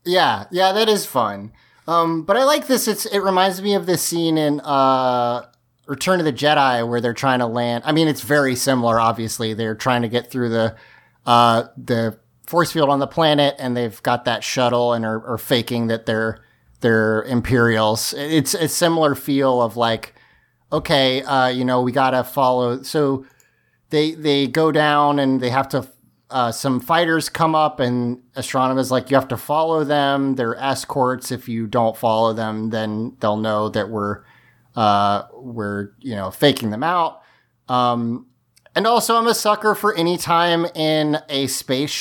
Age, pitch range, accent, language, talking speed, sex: 30-49, 120-150 Hz, American, English, 180 wpm, male